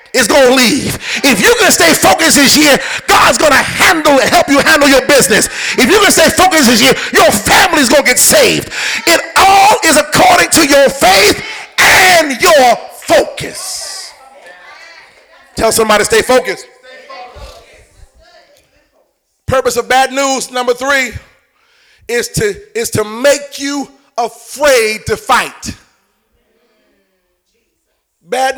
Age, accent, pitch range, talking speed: 40-59, American, 230-330 Hz, 130 wpm